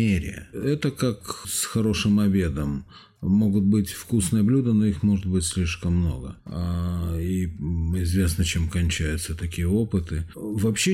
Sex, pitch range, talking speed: male, 90-105 Hz, 120 wpm